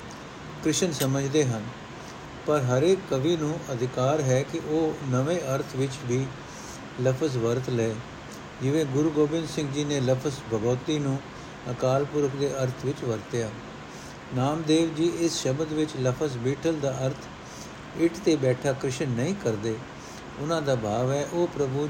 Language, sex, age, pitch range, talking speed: Punjabi, male, 60-79, 125-150 Hz, 150 wpm